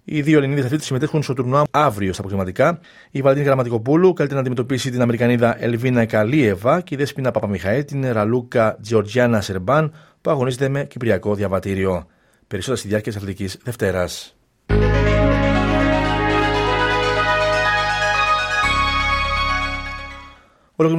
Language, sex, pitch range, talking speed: Greek, male, 105-140 Hz, 115 wpm